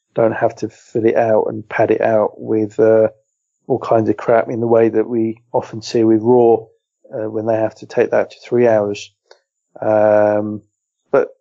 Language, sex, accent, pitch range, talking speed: English, male, British, 110-125 Hz, 195 wpm